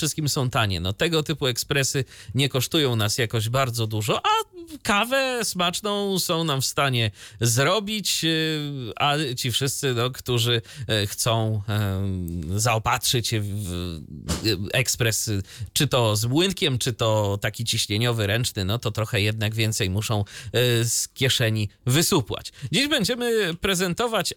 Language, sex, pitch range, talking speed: Polish, male, 110-165 Hz, 120 wpm